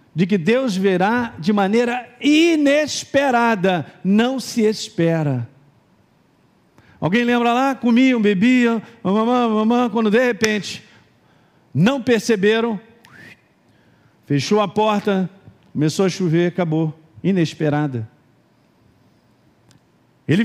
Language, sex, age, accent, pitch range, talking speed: Portuguese, male, 50-69, Brazilian, 150-230 Hz, 90 wpm